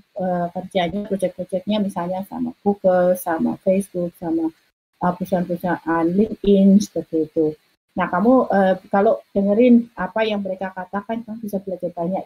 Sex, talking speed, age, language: female, 135 wpm, 30-49, English